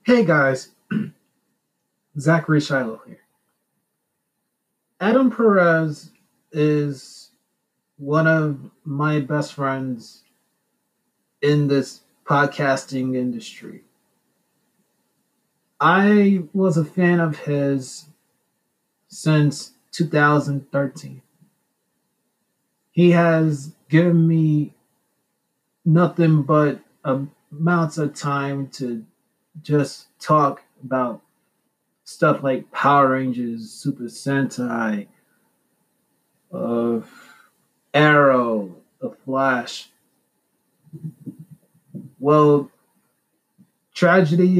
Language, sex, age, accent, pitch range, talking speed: English, male, 30-49, American, 140-175 Hz, 65 wpm